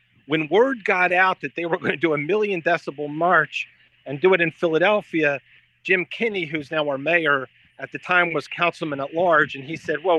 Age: 40-59